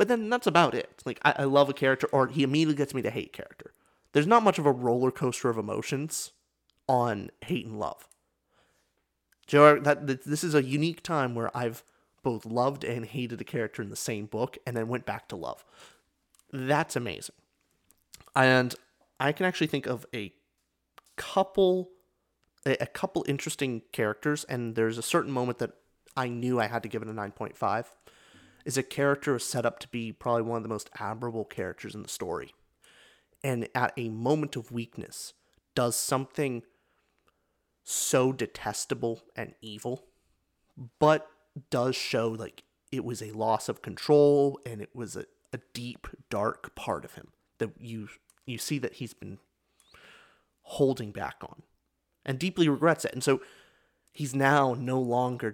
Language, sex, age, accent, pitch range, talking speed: English, male, 30-49, American, 115-145 Hz, 175 wpm